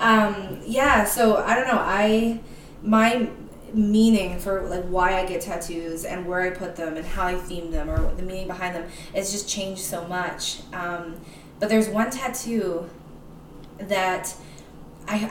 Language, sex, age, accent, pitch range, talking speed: English, female, 20-39, American, 170-200 Hz, 165 wpm